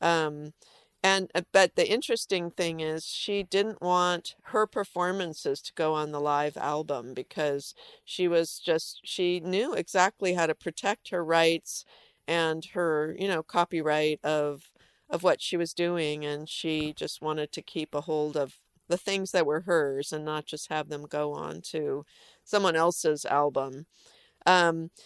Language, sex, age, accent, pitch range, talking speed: English, female, 50-69, American, 155-185 Hz, 160 wpm